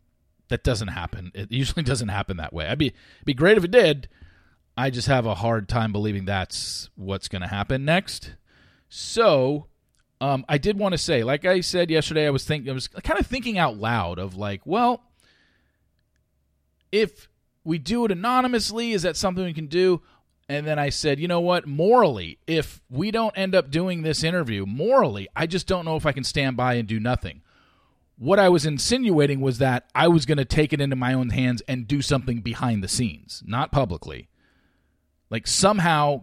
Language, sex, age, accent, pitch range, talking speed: English, male, 40-59, American, 110-160 Hz, 195 wpm